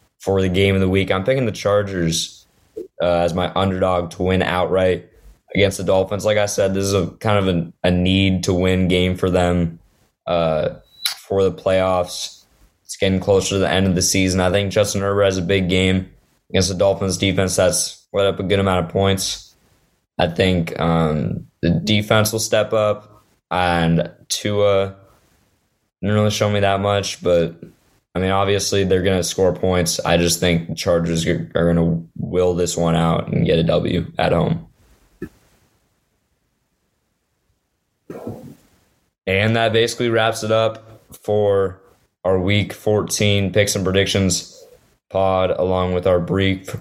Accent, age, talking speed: American, 20-39, 170 wpm